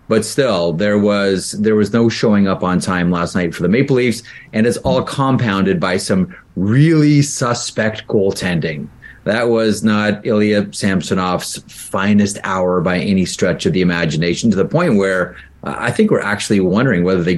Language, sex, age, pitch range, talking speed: English, male, 30-49, 95-130 Hz, 175 wpm